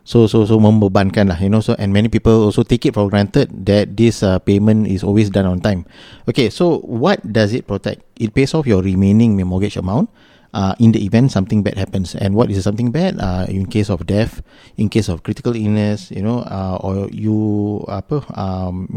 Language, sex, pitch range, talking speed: Malay, male, 100-120 Hz, 215 wpm